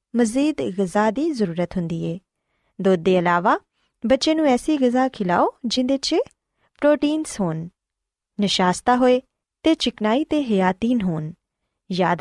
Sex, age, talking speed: female, 20-39, 135 wpm